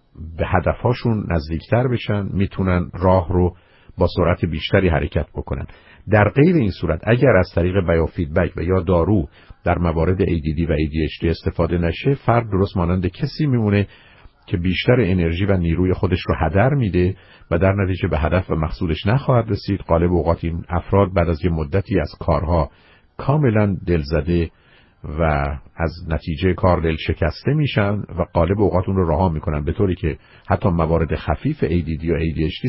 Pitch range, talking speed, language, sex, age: 85-100 Hz, 160 wpm, Persian, male, 50-69